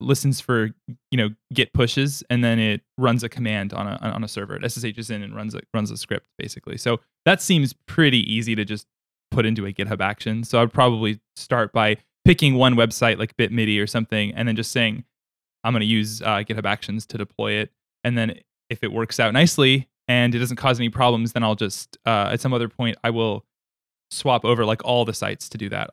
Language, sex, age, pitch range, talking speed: English, male, 10-29, 115-135 Hz, 225 wpm